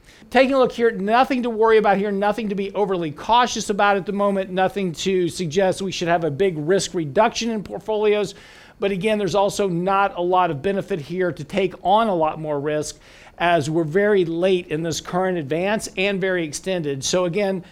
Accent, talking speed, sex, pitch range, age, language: American, 205 wpm, male, 165-200 Hz, 50-69, English